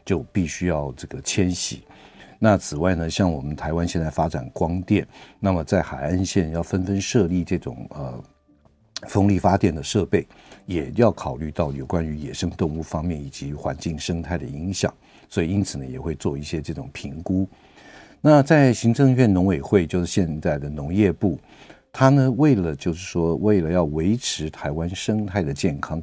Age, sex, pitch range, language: 50-69, male, 80-105 Hz, Chinese